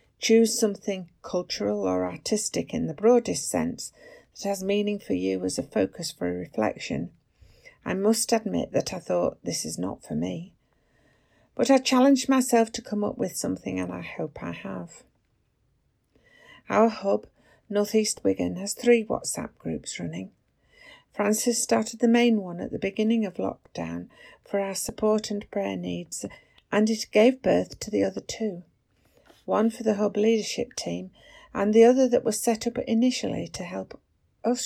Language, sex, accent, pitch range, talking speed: English, female, British, 170-235 Hz, 165 wpm